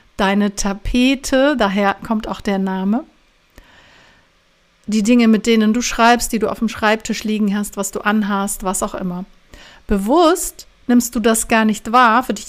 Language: German